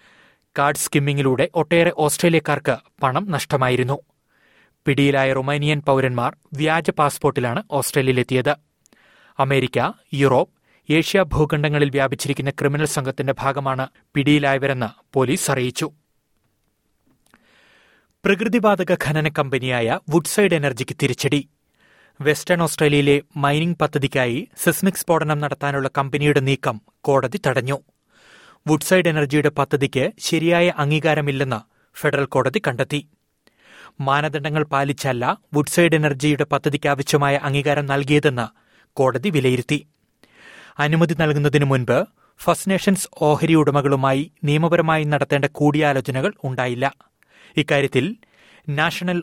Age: 30-49